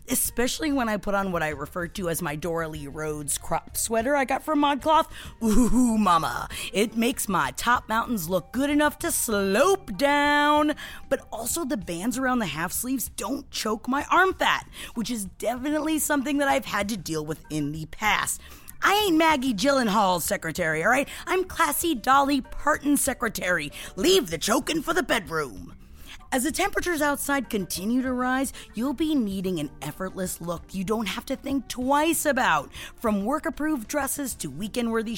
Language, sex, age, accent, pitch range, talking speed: English, female, 30-49, American, 195-290 Hz, 175 wpm